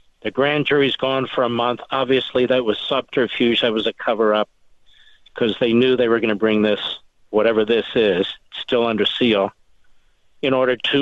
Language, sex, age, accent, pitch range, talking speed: English, male, 50-69, American, 115-150 Hz, 185 wpm